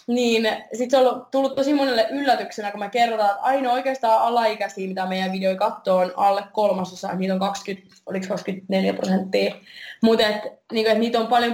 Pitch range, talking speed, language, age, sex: 190-230 Hz, 175 wpm, Finnish, 20-39, female